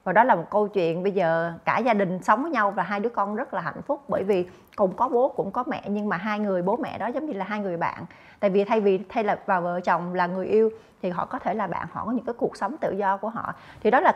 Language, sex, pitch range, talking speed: Vietnamese, female, 200-255 Hz, 310 wpm